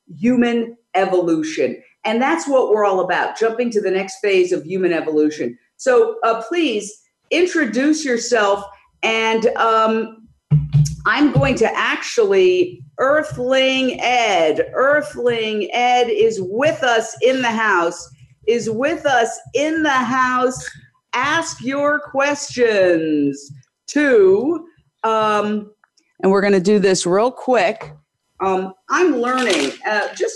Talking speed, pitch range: 120 wpm, 195-275 Hz